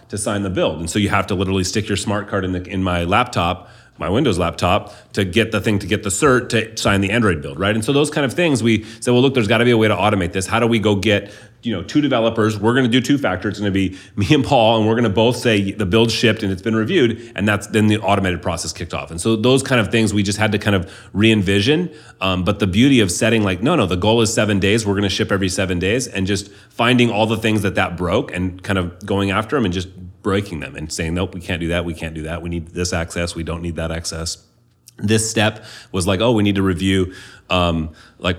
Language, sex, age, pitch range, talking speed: English, male, 30-49, 90-110 Hz, 285 wpm